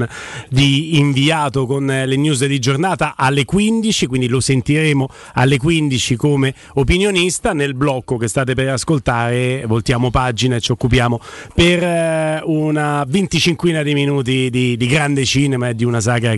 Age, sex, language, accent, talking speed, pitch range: 30-49, male, Italian, native, 145 wpm, 130-170 Hz